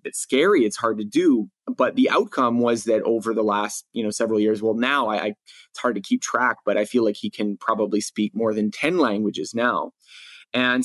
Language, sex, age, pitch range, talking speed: English, male, 30-49, 105-130 Hz, 225 wpm